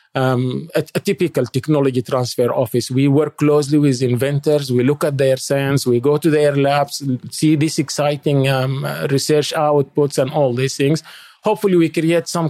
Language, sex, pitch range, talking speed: English, male, 130-150 Hz, 175 wpm